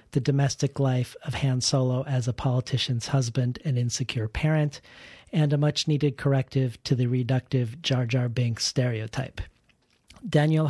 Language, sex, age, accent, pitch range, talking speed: English, male, 40-59, American, 130-150 Hz, 140 wpm